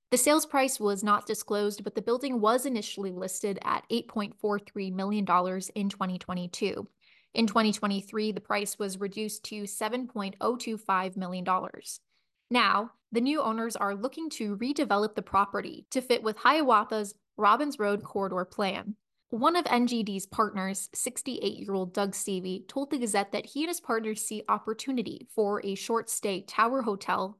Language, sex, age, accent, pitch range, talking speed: English, female, 20-39, American, 200-245 Hz, 145 wpm